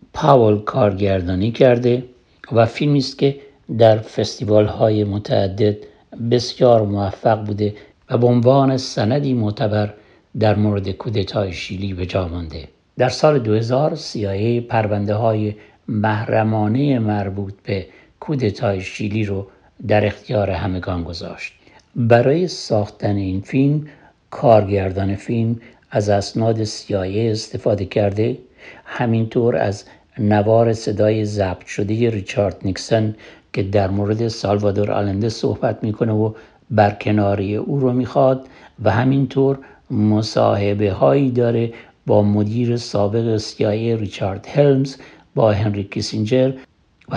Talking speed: 115 wpm